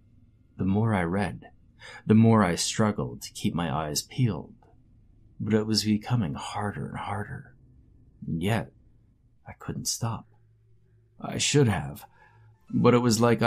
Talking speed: 140 wpm